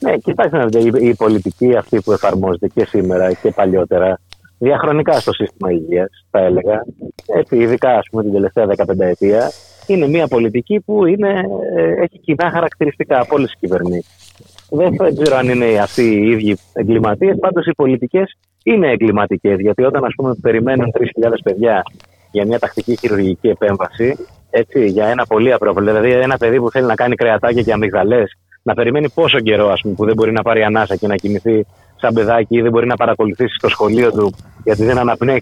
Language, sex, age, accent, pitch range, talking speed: Greek, male, 30-49, native, 105-140 Hz, 170 wpm